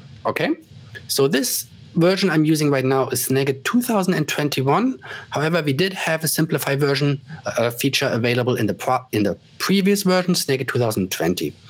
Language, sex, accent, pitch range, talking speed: English, male, German, 125-170 Hz, 150 wpm